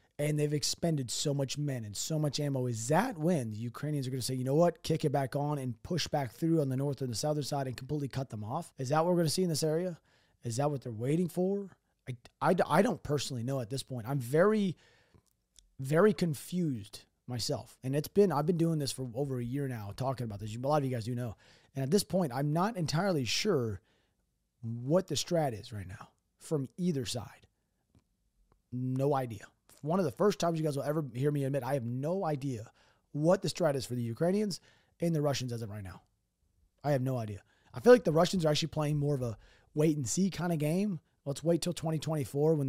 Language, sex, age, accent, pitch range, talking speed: English, male, 30-49, American, 125-165 Hz, 240 wpm